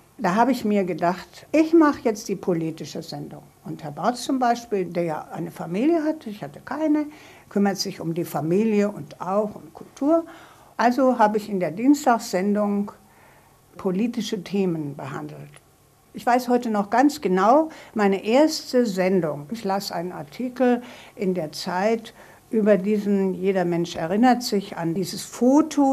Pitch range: 180-245 Hz